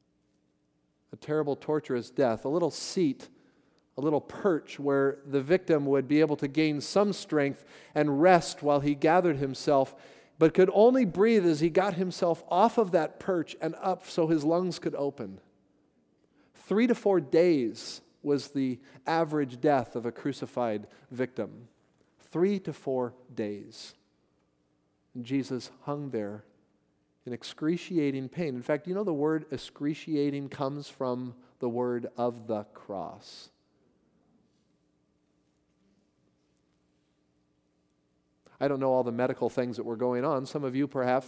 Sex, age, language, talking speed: male, 40-59, English, 140 wpm